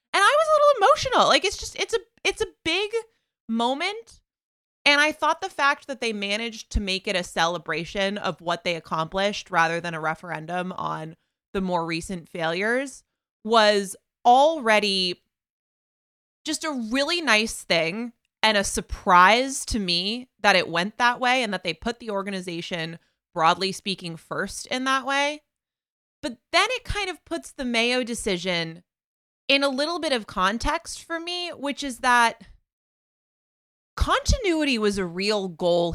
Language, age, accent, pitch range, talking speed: English, 20-39, American, 185-280 Hz, 160 wpm